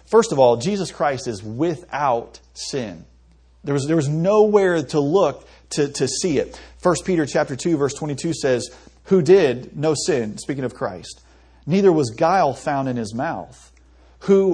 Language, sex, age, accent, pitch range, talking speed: English, male, 40-59, American, 120-155 Hz, 175 wpm